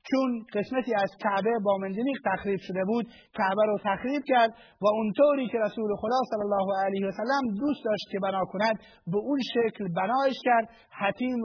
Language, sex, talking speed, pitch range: Persian, male, 175 wpm, 195-235 Hz